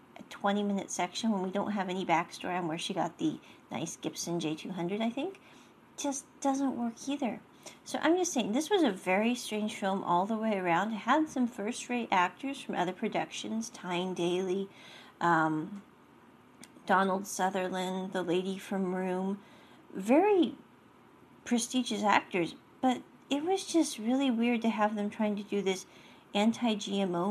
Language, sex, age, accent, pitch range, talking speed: English, female, 40-59, American, 185-255 Hz, 155 wpm